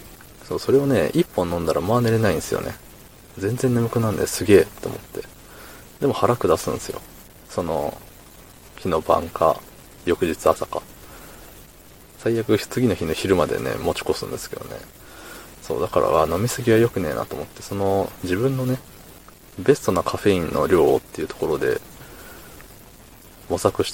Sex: male